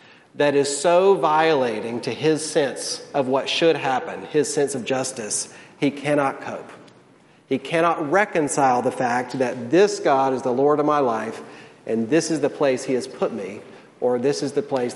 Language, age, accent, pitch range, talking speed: English, 40-59, American, 135-165 Hz, 185 wpm